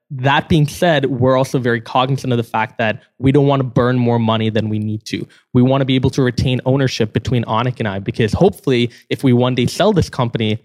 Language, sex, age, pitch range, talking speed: English, male, 20-39, 120-145 Hz, 240 wpm